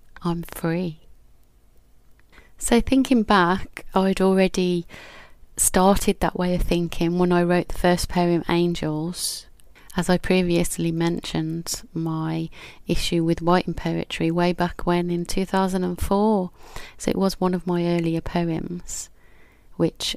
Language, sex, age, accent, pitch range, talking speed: English, female, 30-49, British, 170-185 Hz, 125 wpm